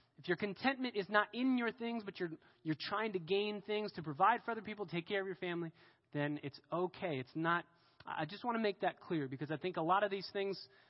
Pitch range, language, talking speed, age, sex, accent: 140-195 Hz, English, 250 wpm, 30-49, male, American